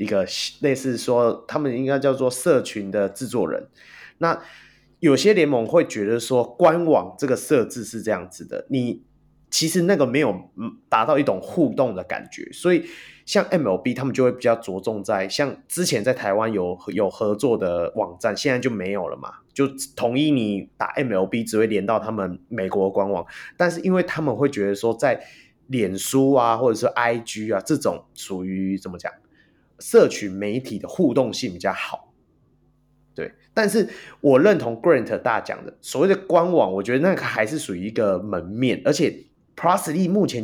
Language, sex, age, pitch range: Chinese, male, 30-49, 105-140 Hz